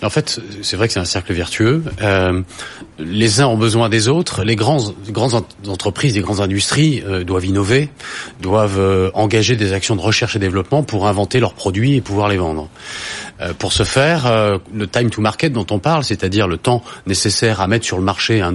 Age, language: 30-49, French